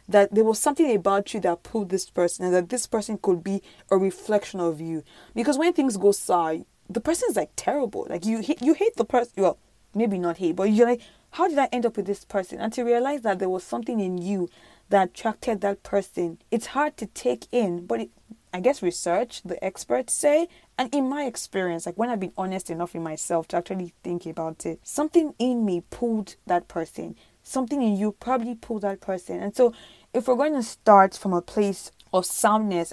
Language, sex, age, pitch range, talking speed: English, female, 20-39, 180-225 Hz, 215 wpm